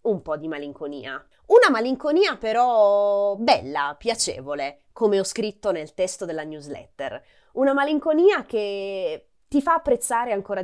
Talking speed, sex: 130 wpm, female